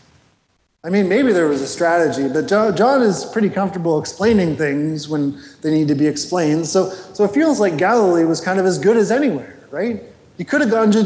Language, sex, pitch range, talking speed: English, male, 160-215 Hz, 210 wpm